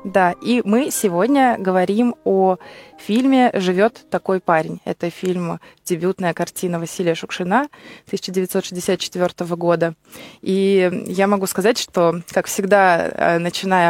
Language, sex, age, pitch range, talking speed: Russian, female, 20-39, 180-215 Hz, 110 wpm